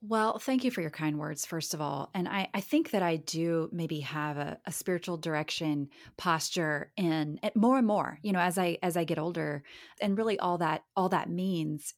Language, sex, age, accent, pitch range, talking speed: English, female, 30-49, American, 165-205 Hz, 220 wpm